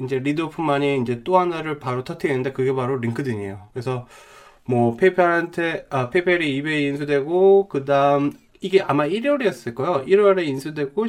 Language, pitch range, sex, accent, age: Korean, 125-185 Hz, male, native, 20-39